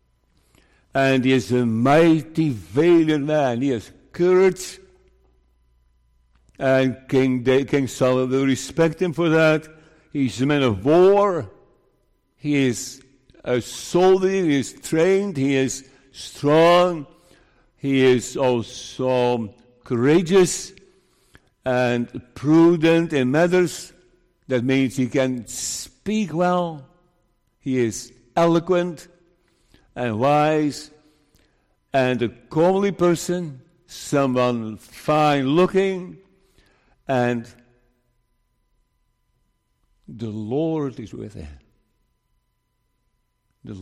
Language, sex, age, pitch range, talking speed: English, male, 60-79, 125-175 Hz, 95 wpm